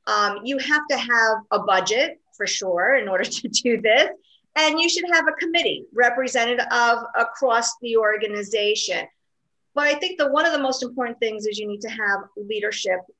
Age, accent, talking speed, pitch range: 50-69, American, 185 wpm, 205-275 Hz